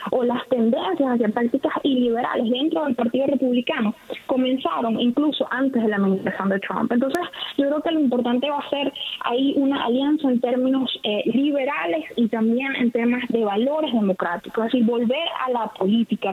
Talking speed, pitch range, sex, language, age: 170 wpm, 230-285 Hz, female, Spanish, 20-39